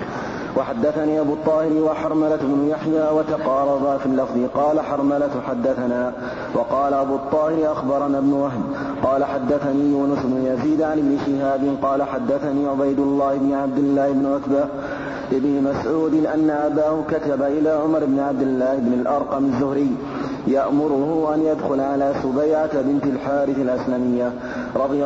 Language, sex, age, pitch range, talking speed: Arabic, male, 30-49, 140-155 Hz, 135 wpm